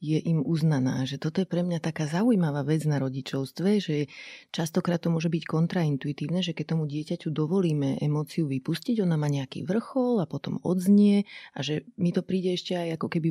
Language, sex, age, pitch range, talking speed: Slovak, female, 30-49, 150-180 Hz, 190 wpm